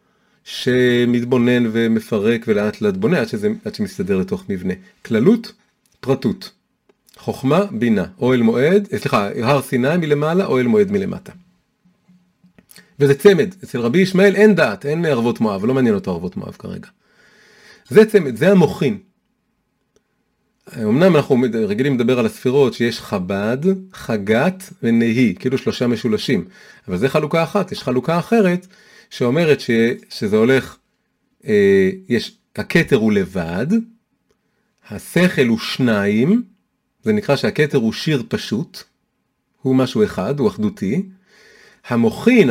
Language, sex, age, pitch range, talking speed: Hebrew, male, 40-59, 140-210 Hz, 120 wpm